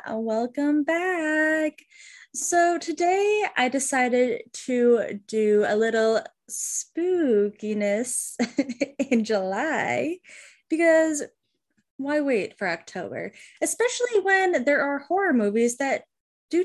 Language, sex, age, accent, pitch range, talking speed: English, female, 10-29, American, 225-305 Hz, 95 wpm